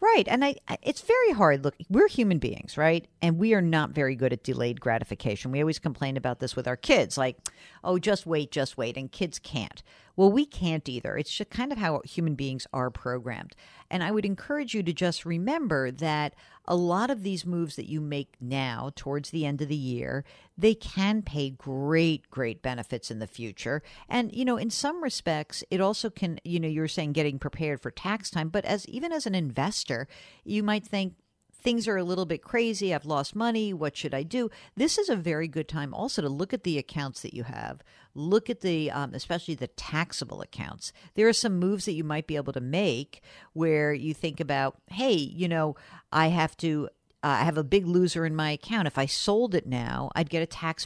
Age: 50-69